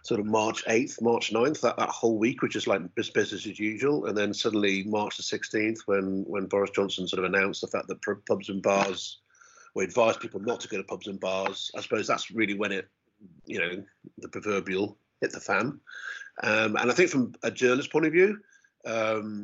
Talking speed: 215 wpm